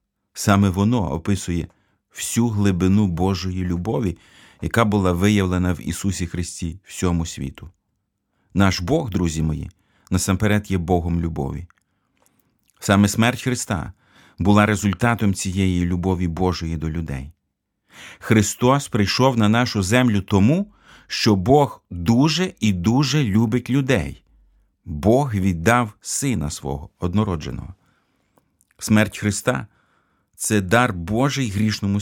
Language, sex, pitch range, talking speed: Ukrainian, male, 90-115 Hz, 105 wpm